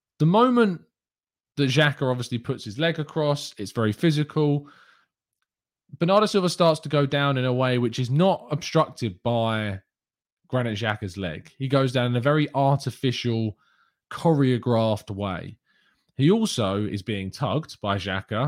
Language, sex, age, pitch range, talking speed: English, male, 20-39, 110-160 Hz, 145 wpm